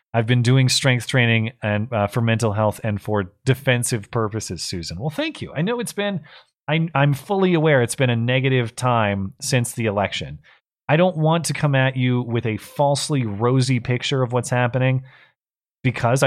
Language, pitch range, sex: English, 110-140 Hz, male